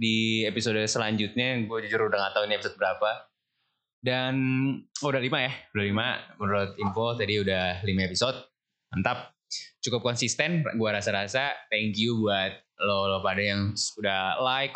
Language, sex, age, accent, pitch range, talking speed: Indonesian, male, 20-39, native, 100-125 Hz, 150 wpm